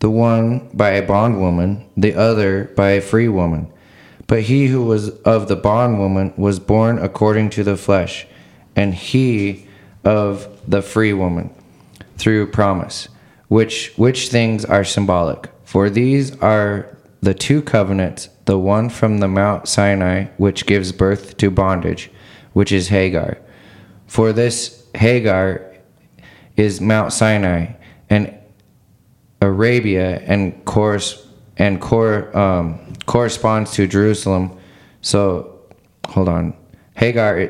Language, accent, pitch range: English, American, 95-115 Hz